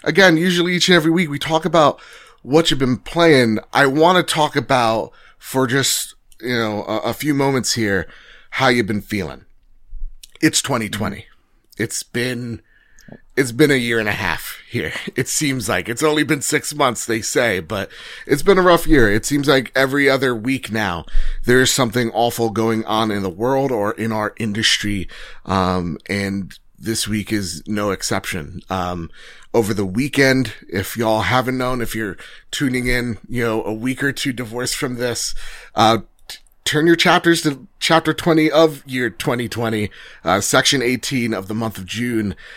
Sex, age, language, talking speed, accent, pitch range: male, 30-49, English, 180 wpm, American, 110-135 Hz